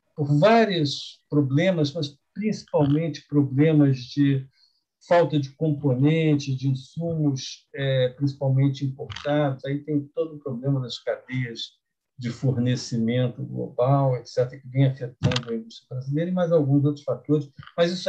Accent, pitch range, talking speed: Brazilian, 125-165 Hz, 130 wpm